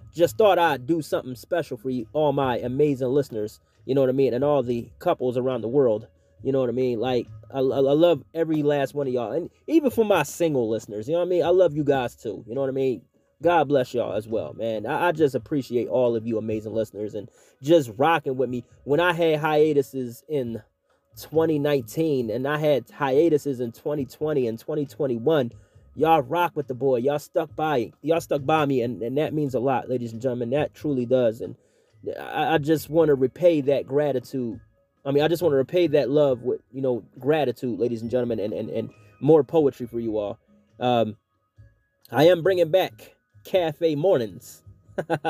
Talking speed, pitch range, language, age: 210 wpm, 120-155 Hz, English, 30-49